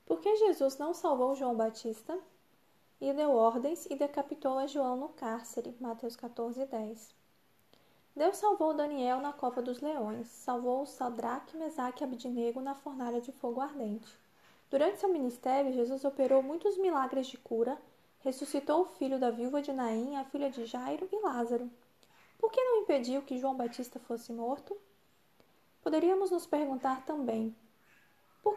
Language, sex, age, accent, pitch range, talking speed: Portuguese, female, 20-39, Brazilian, 245-300 Hz, 150 wpm